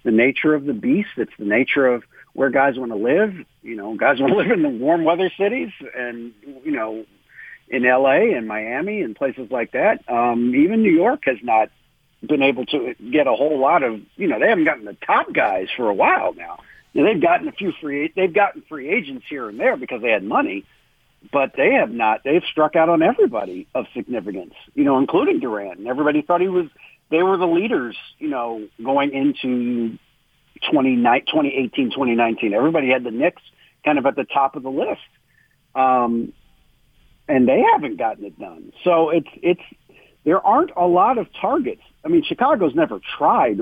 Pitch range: 125-175 Hz